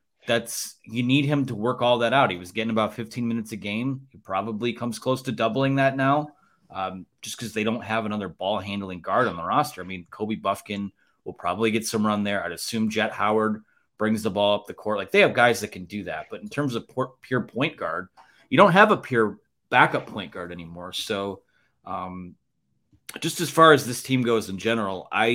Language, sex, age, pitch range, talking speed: English, male, 30-49, 105-120 Hz, 225 wpm